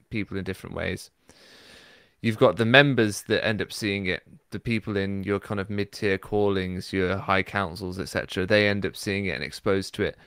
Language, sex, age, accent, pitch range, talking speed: English, male, 20-39, British, 95-120 Hz, 200 wpm